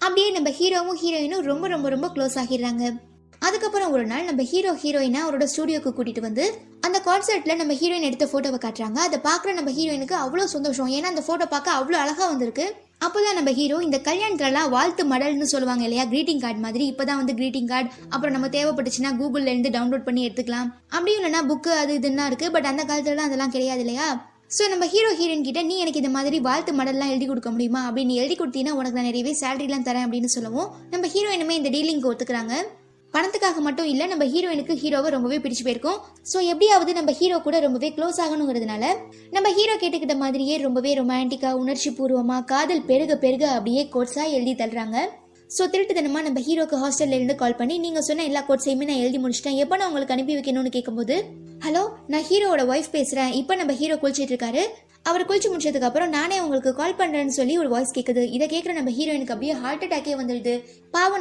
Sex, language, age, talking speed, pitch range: female, Tamil, 20-39, 185 wpm, 260-330 Hz